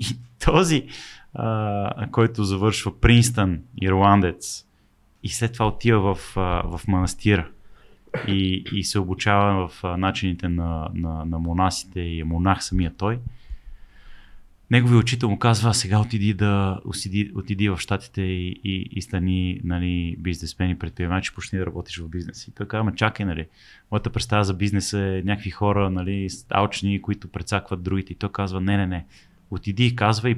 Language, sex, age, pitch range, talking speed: Bulgarian, male, 30-49, 90-110 Hz, 160 wpm